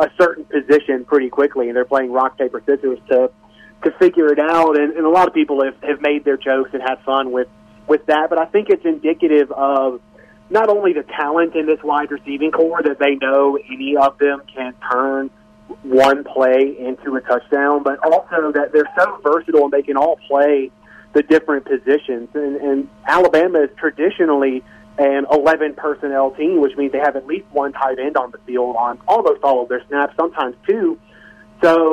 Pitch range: 135-155 Hz